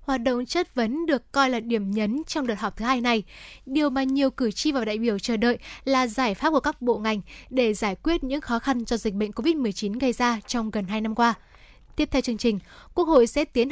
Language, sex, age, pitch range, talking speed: Vietnamese, female, 10-29, 230-285 Hz, 250 wpm